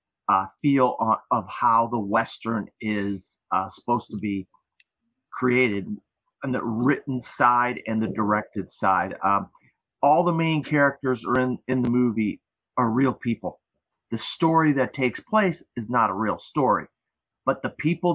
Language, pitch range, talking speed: English, 115-145 Hz, 155 wpm